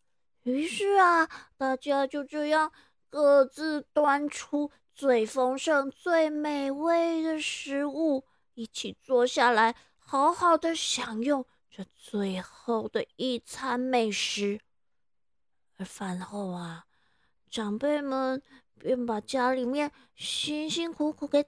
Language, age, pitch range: Chinese, 20-39, 225-295 Hz